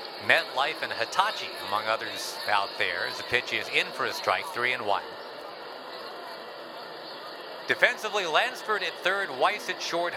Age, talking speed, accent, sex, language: 50-69, 155 wpm, American, male, English